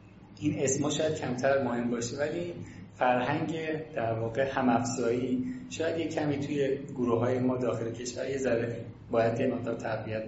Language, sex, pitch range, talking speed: Persian, male, 120-145 Hz, 150 wpm